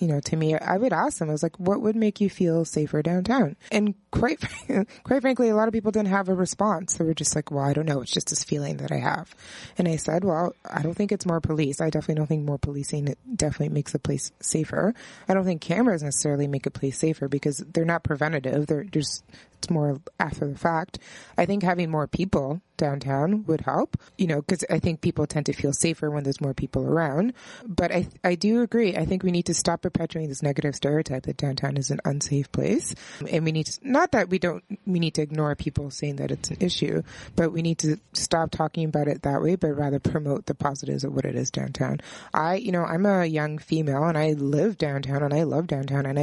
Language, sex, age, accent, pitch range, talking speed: English, female, 20-39, American, 145-180 Hz, 240 wpm